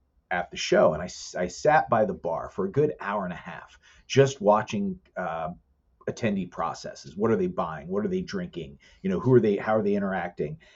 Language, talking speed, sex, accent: English, 220 wpm, male, American